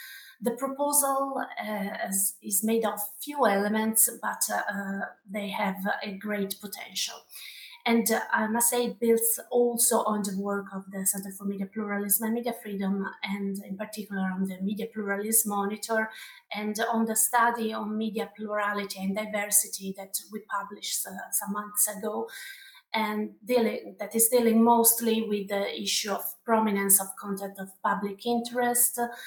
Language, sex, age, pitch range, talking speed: English, female, 30-49, 200-235 Hz, 155 wpm